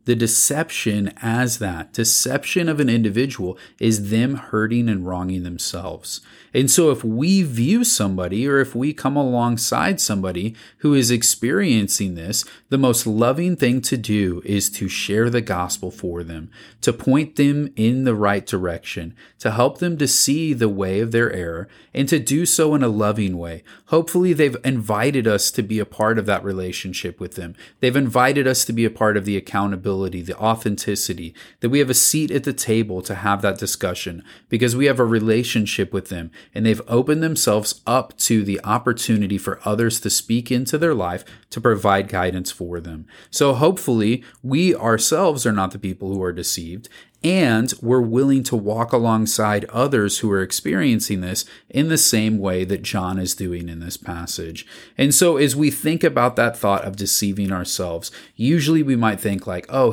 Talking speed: 180 wpm